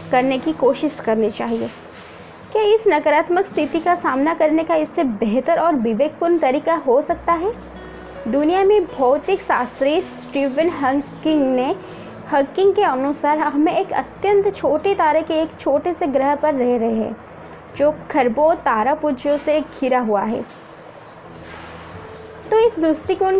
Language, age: Hindi, 20-39